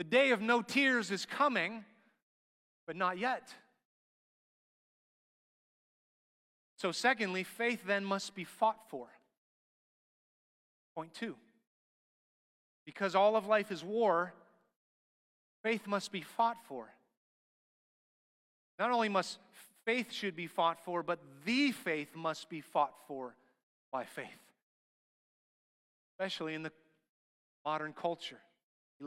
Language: English